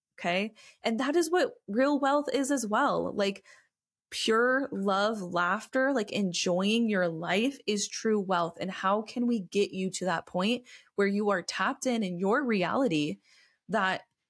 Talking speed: 165 wpm